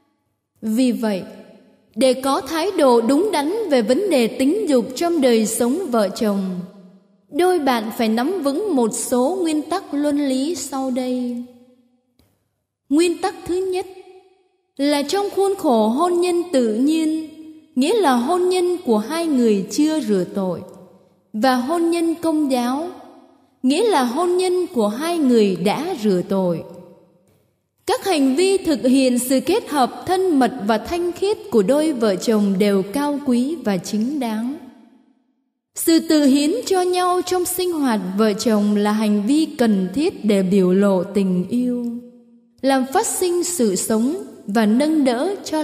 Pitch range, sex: 230-330 Hz, female